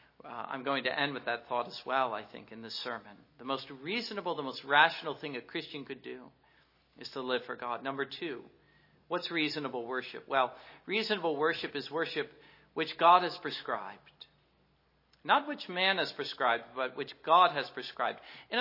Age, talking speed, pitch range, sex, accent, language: 50-69, 180 wpm, 155-235 Hz, male, American, English